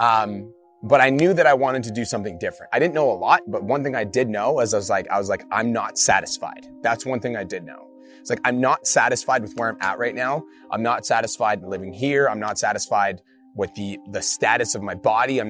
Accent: American